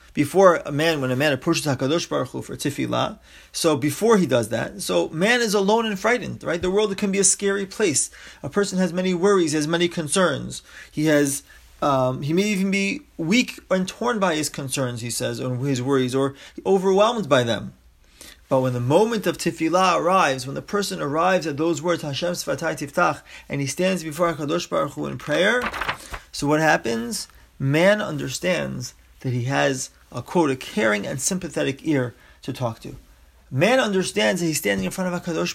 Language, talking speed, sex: English, 195 wpm, male